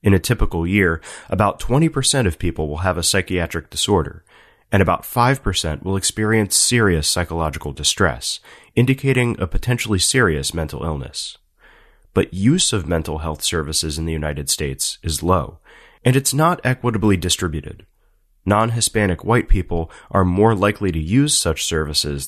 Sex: male